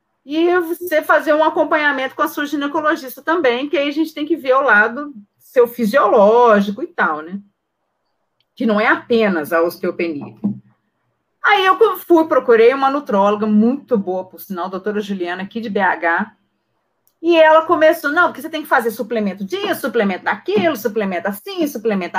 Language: Portuguese